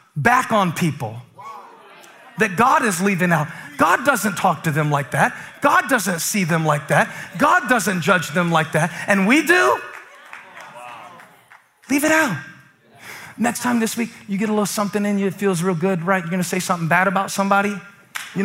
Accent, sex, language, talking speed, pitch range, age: American, male, English, 190 wpm, 195-295 Hz, 30-49